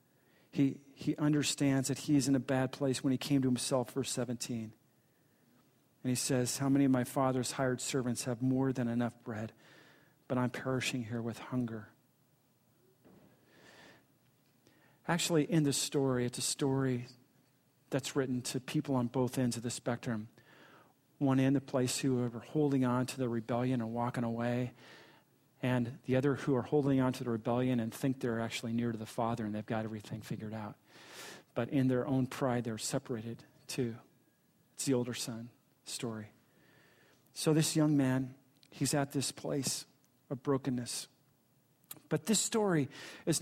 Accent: American